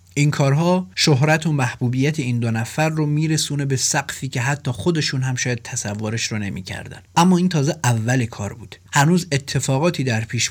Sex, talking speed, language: male, 175 wpm, Persian